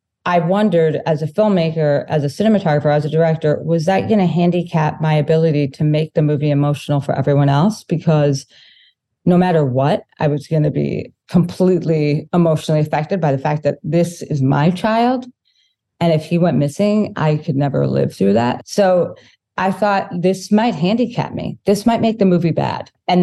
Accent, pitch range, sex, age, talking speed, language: American, 150-180 Hz, female, 30-49, 185 wpm, English